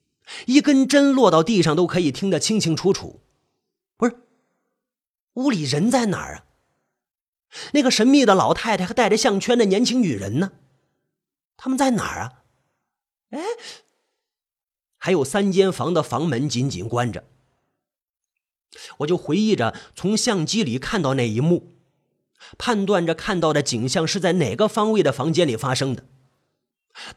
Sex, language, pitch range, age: male, Chinese, 145-240 Hz, 30-49